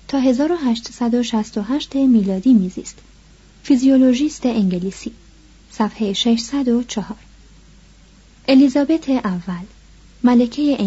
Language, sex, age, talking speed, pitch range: Persian, female, 30-49, 60 wpm, 215-275 Hz